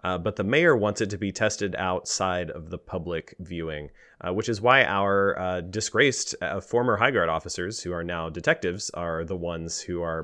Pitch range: 85-105 Hz